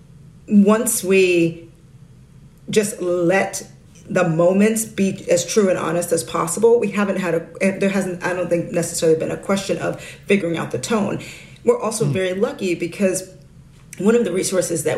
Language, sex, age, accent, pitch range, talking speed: English, female, 40-59, American, 165-210 Hz, 165 wpm